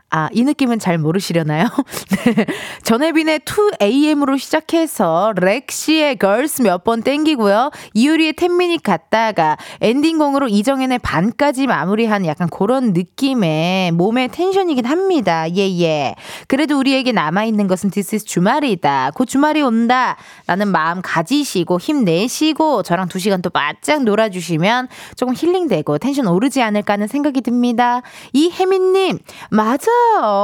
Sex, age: female, 20-39